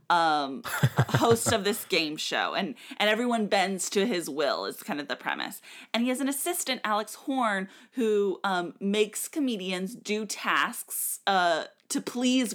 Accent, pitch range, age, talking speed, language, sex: American, 180-255 Hz, 30-49, 165 wpm, English, female